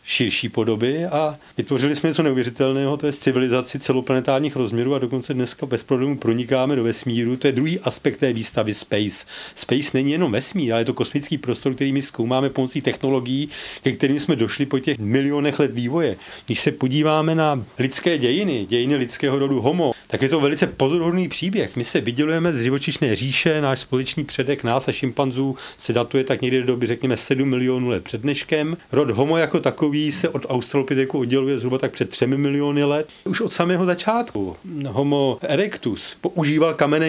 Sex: male